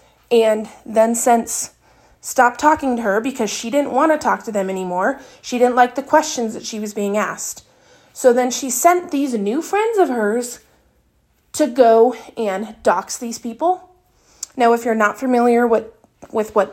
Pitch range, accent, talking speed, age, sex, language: 215-270 Hz, American, 175 wpm, 30-49, female, English